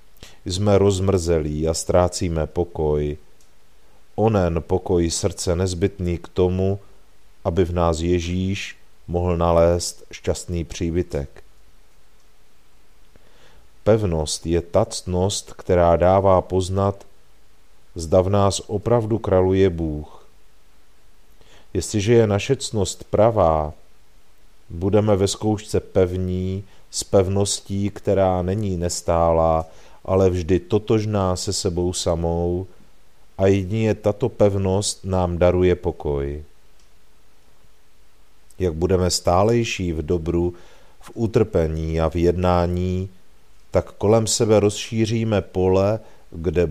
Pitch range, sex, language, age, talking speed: 85-100 Hz, male, Czech, 40-59, 95 wpm